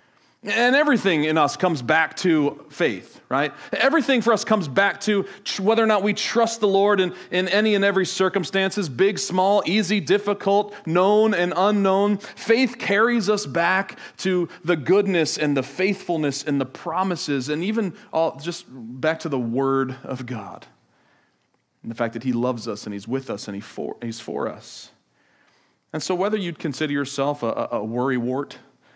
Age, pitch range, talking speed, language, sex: 40-59, 135-205 Hz, 180 wpm, English, male